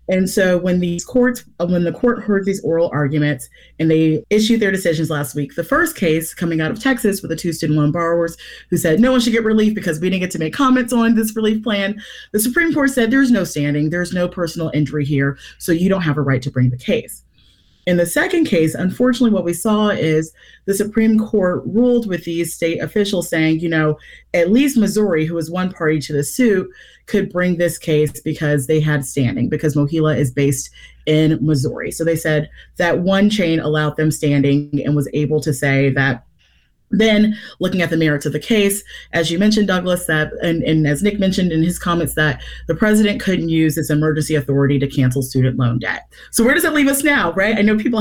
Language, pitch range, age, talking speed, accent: English, 155-210 Hz, 30-49, 220 wpm, American